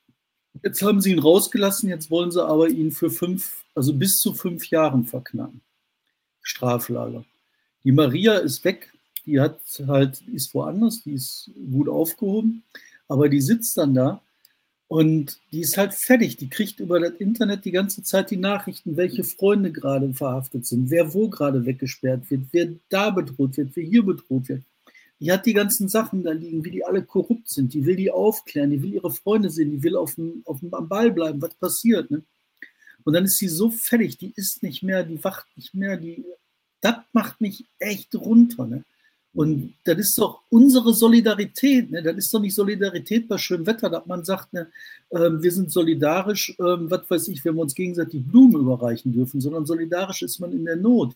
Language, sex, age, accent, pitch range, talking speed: German, male, 60-79, German, 155-205 Hz, 190 wpm